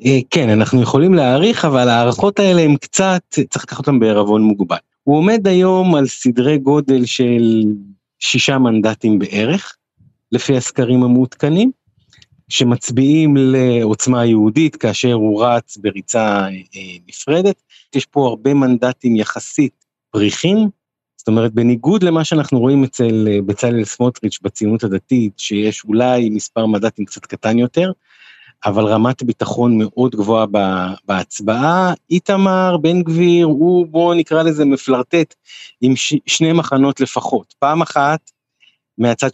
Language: Hebrew